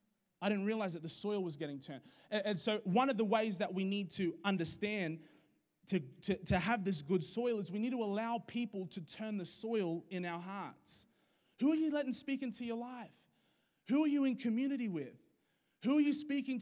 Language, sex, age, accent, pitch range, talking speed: English, male, 20-39, Australian, 175-230 Hz, 215 wpm